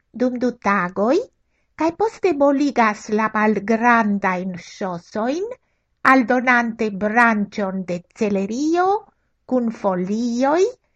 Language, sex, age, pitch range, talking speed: Italian, female, 60-79, 195-285 Hz, 90 wpm